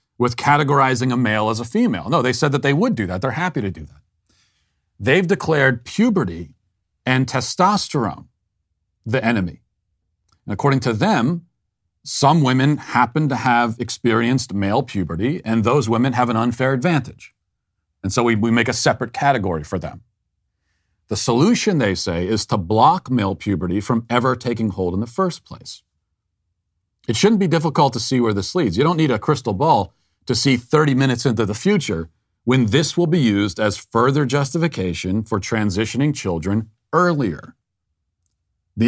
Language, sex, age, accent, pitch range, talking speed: English, male, 40-59, American, 100-140 Hz, 165 wpm